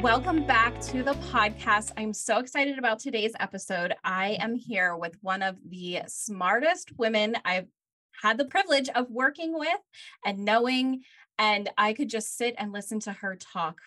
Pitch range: 190-240 Hz